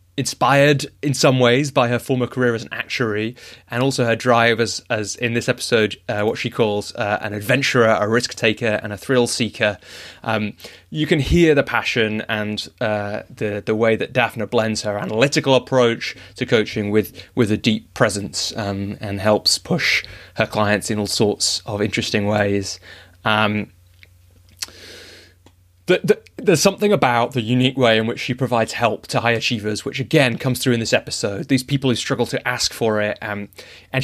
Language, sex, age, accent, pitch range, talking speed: English, male, 20-39, British, 105-130 Hz, 185 wpm